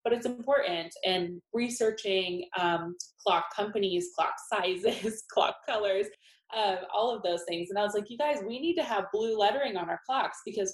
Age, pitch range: 20-39, 180-215 Hz